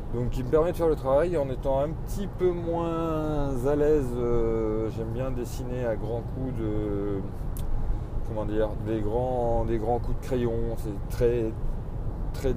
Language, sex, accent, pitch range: French, male, French, 110-130 Hz